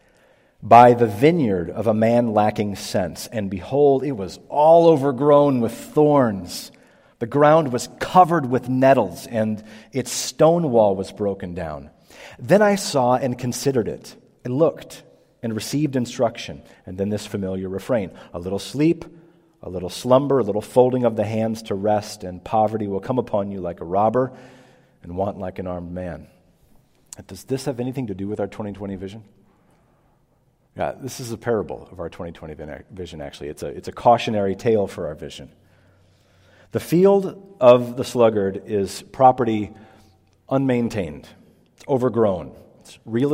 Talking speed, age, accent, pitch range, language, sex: 160 wpm, 40-59, American, 100-130 Hz, English, male